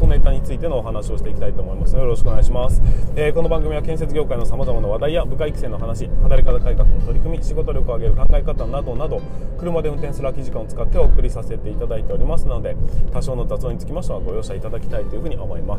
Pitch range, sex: 115-160 Hz, male